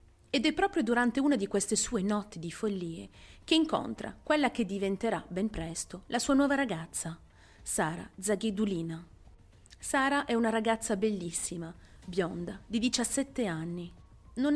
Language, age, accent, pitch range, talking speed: Italian, 40-59, native, 175-245 Hz, 140 wpm